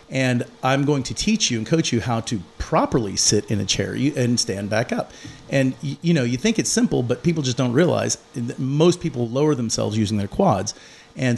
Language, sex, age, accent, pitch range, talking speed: English, male, 40-59, American, 115-140 Hz, 215 wpm